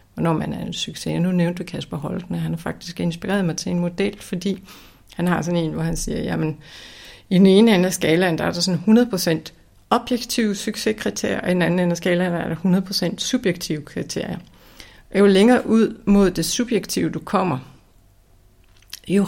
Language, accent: Danish, native